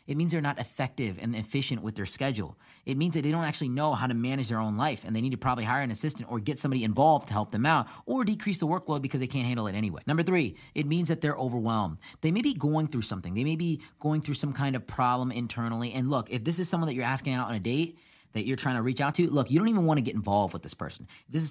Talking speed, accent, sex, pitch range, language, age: 295 wpm, American, male, 115-150 Hz, English, 30-49